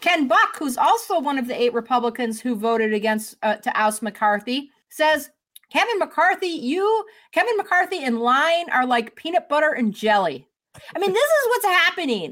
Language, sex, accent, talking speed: English, female, American, 175 wpm